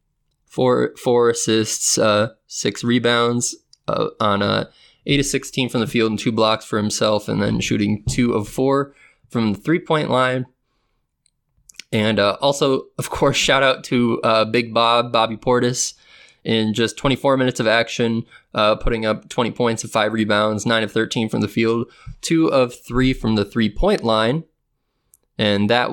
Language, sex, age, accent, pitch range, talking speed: English, male, 20-39, American, 105-120 Hz, 165 wpm